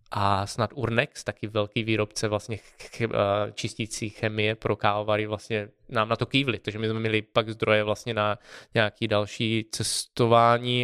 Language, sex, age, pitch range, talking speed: Czech, male, 20-39, 110-125 Hz, 160 wpm